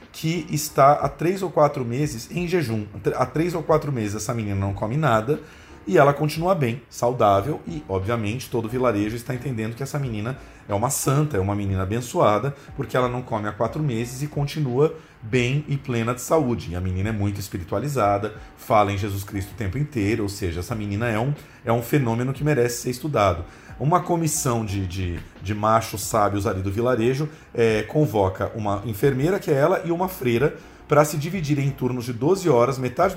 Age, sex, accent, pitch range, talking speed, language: 40-59, male, Brazilian, 105-145 Hz, 190 wpm, Portuguese